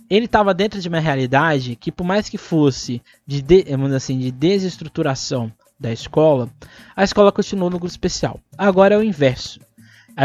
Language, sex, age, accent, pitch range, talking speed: Portuguese, male, 20-39, Brazilian, 125-180 Hz, 160 wpm